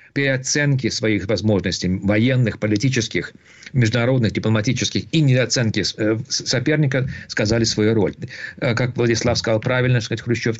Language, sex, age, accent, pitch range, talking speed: Russian, male, 50-69, native, 110-140 Hz, 95 wpm